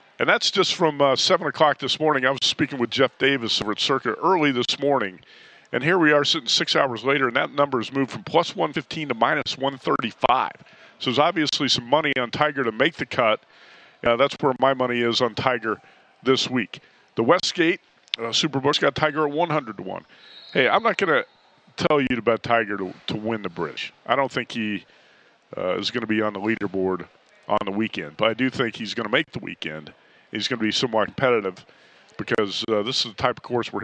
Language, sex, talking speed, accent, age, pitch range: English, male, 220 wpm, American, 40-59, 110-140 Hz